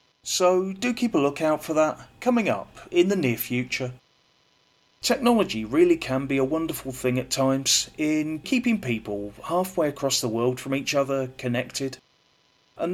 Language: English